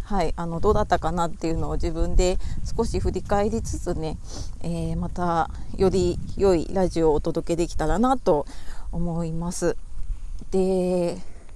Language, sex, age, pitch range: Japanese, female, 30-49, 165-225 Hz